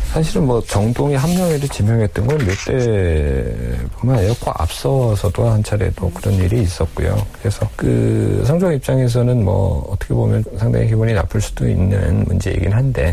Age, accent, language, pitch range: 40-59, native, Korean, 85-110 Hz